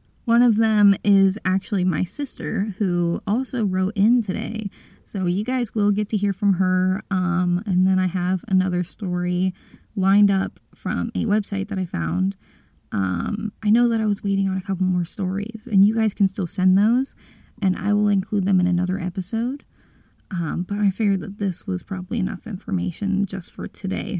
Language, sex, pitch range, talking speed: English, female, 185-215 Hz, 190 wpm